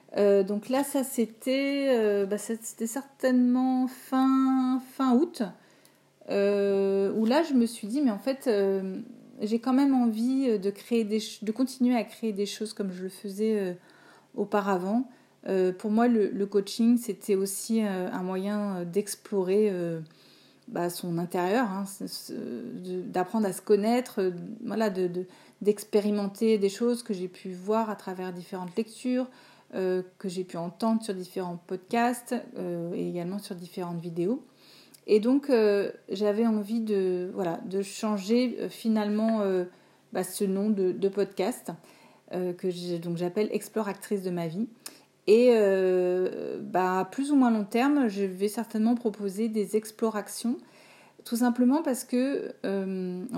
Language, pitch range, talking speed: French, 190-240 Hz, 160 wpm